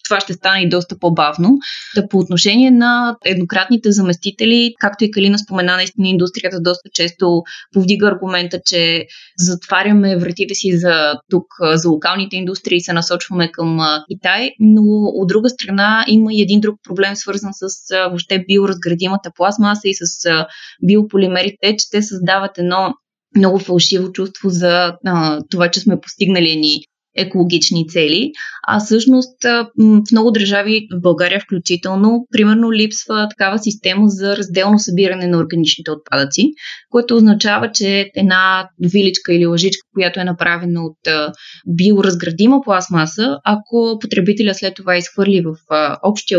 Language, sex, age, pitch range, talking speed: Bulgarian, female, 20-39, 175-205 Hz, 140 wpm